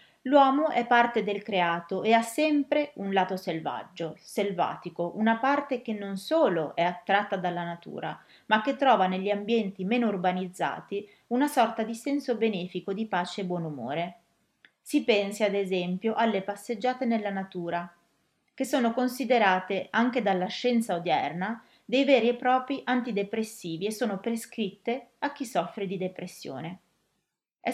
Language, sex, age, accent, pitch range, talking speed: Italian, female, 30-49, native, 185-240 Hz, 145 wpm